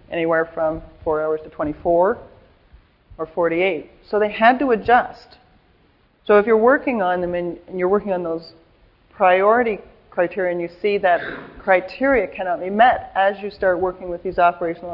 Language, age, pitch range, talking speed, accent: English, 40-59, 165-195 Hz, 165 wpm, American